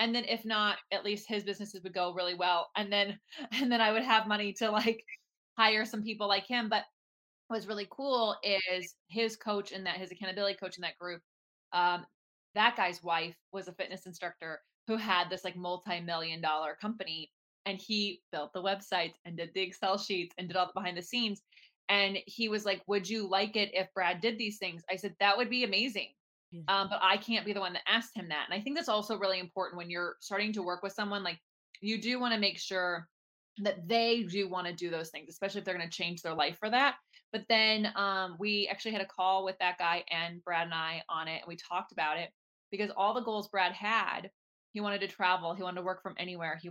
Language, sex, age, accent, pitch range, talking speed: English, female, 20-39, American, 180-210 Hz, 235 wpm